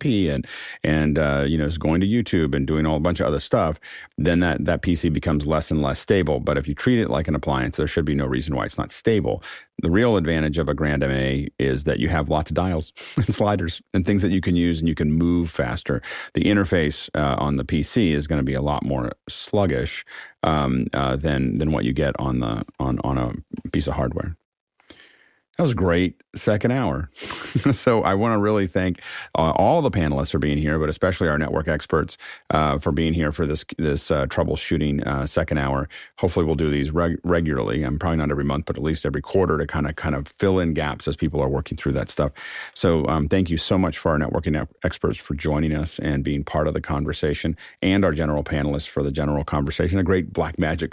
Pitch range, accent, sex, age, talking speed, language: 75-85 Hz, American, male, 40-59, 230 wpm, English